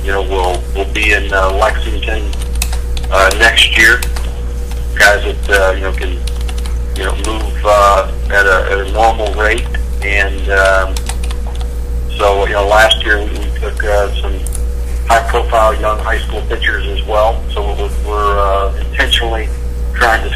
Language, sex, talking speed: English, male, 155 wpm